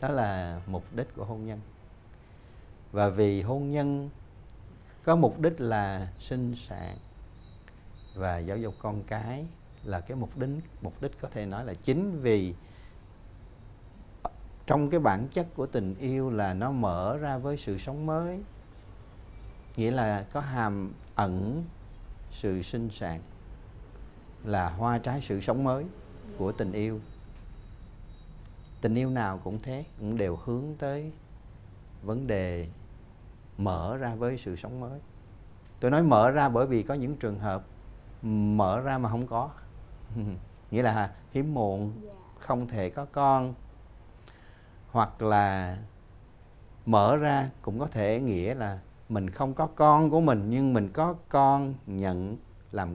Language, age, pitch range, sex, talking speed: Vietnamese, 60-79, 100-130 Hz, male, 145 wpm